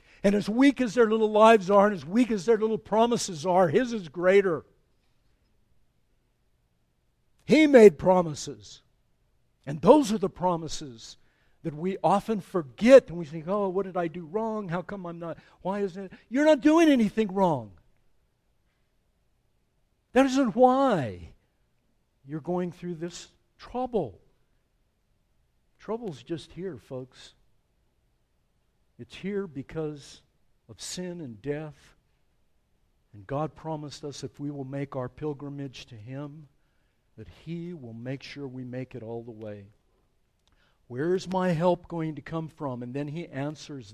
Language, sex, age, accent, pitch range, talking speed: English, male, 60-79, American, 125-190 Hz, 145 wpm